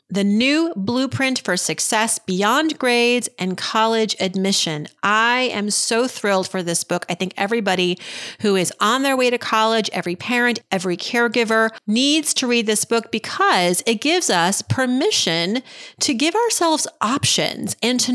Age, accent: 30-49, American